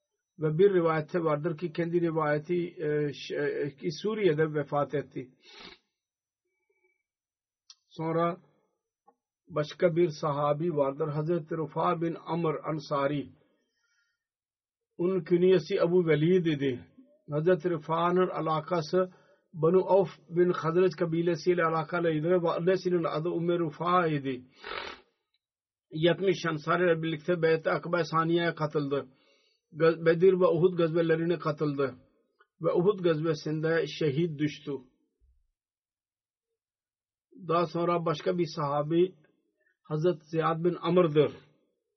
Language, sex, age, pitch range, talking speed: Turkish, male, 50-69, 155-180 Hz, 105 wpm